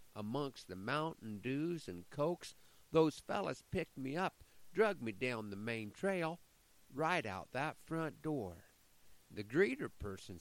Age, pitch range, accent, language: 50-69, 95-145 Hz, American, English